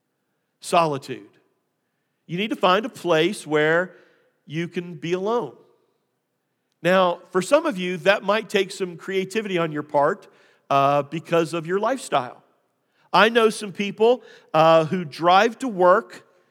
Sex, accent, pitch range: male, American, 160-200 Hz